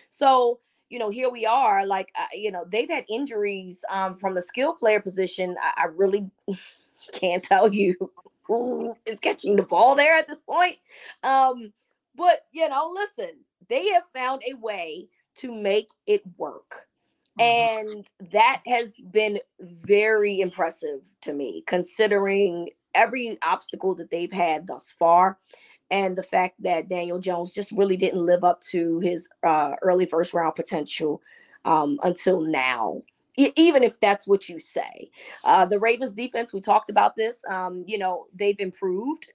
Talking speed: 160 wpm